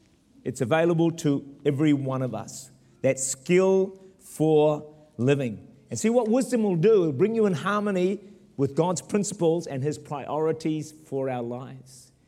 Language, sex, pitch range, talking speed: English, male, 125-165 Hz, 155 wpm